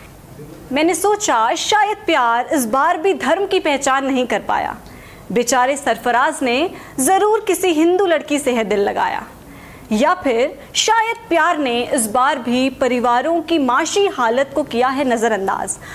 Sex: female